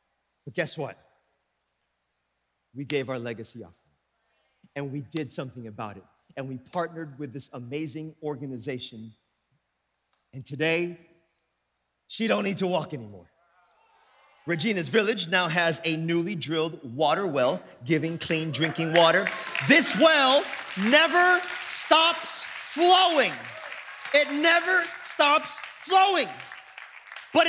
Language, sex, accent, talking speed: English, male, American, 115 wpm